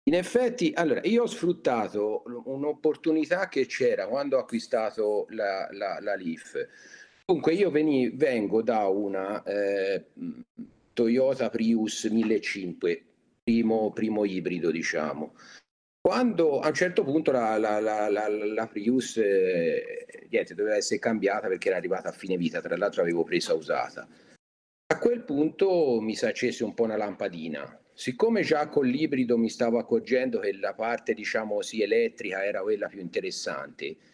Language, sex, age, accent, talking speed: Italian, male, 50-69, native, 145 wpm